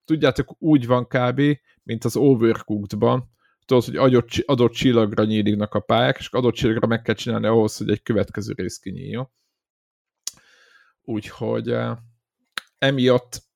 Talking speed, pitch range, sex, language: 130 wpm, 110-135 Hz, male, Hungarian